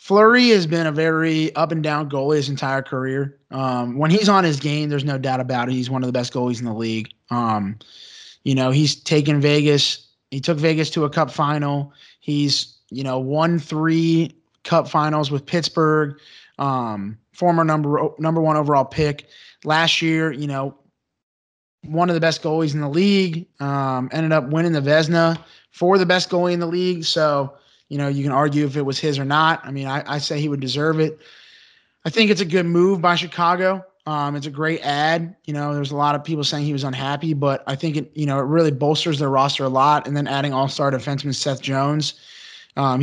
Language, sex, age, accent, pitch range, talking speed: English, male, 20-39, American, 140-160 Hz, 210 wpm